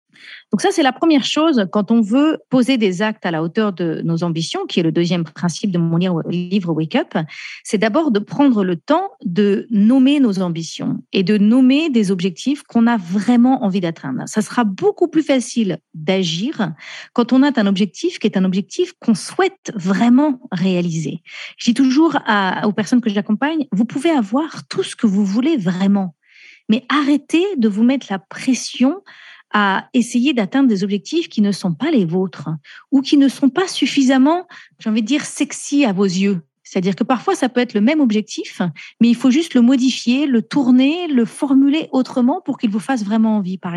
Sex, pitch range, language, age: female, 195-275 Hz, French, 40-59